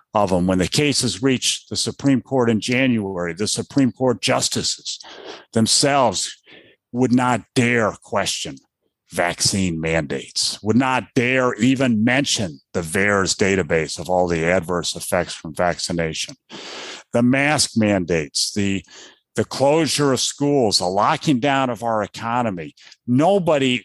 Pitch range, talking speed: 95-130 Hz, 130 wpm